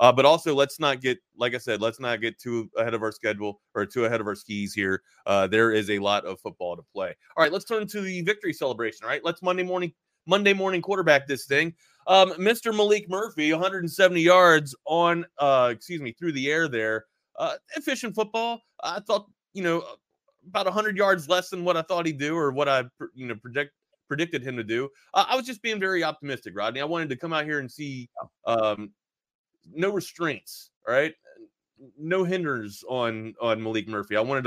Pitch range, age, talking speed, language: 115-185 Hz, 30-49, 210 wpm, English